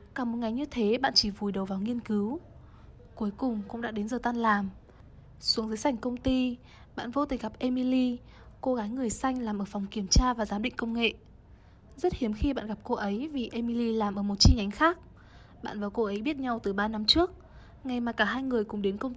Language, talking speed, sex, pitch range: Vietnamese, 240 wpm, female, 210-255 Hz